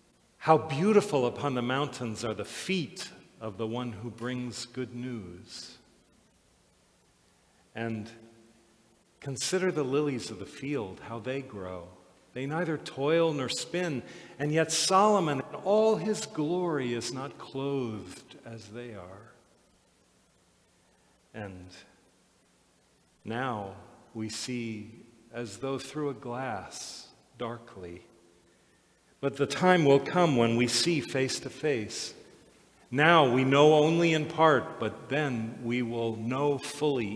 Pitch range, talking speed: 115-160 Hz, 125 wpm